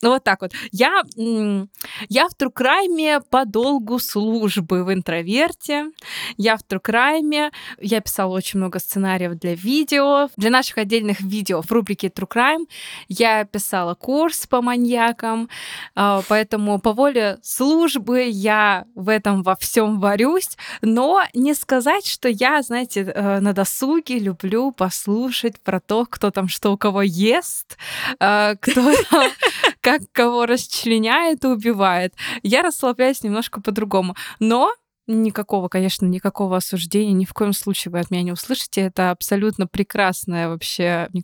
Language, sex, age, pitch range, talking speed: Russian, female, 20-39, 190-250 Hz, 130 wpm